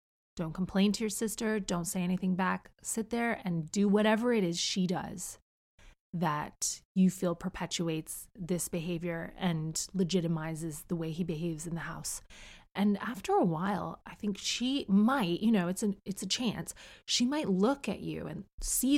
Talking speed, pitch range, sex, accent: 170 wpm, 170-215 Hz, female, American